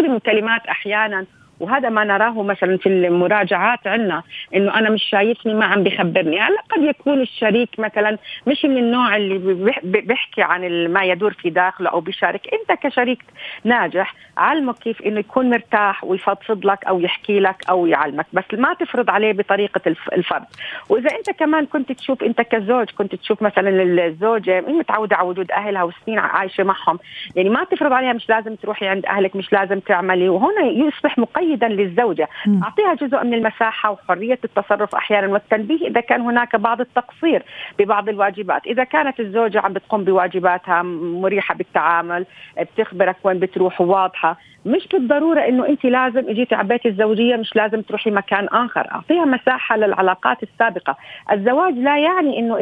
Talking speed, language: 155 wpm, Arabic